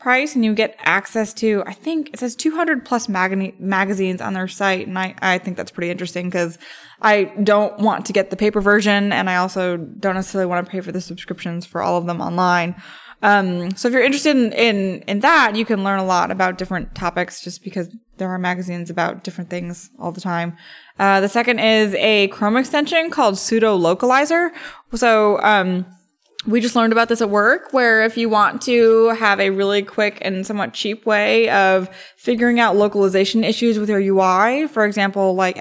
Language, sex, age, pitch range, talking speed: English, female, 20-39, 185-220 Hz, 200 wpm